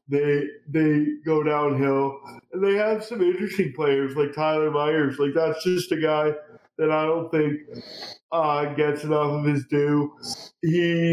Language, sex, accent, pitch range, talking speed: English, male, American, 145-165 Hz, 155 wpm